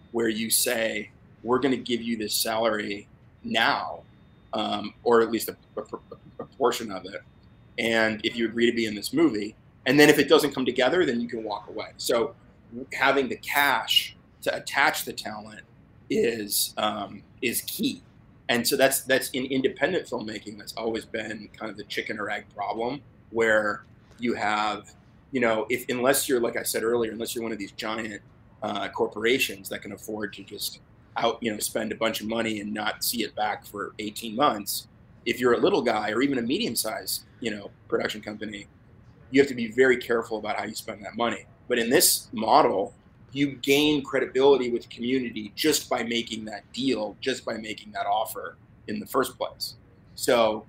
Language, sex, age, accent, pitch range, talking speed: English, male, 30-49, American, 105-130 Hz, 190 wpm